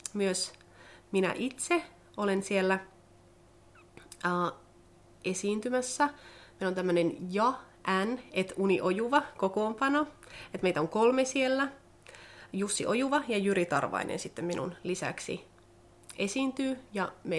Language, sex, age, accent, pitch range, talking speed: Finnish, female, 30-49, native, 170-215 Hz, 105 wpm